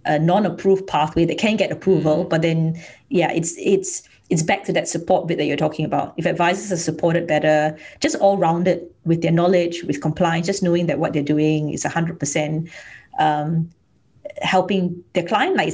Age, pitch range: 30-49, 155-190 Hz